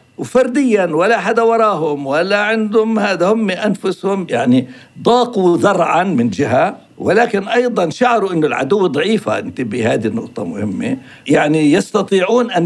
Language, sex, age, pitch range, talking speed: Arabic, male, 60-79, 160-220 Hz, 130 wpm